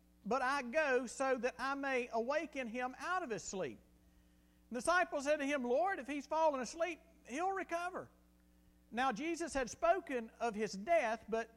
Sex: male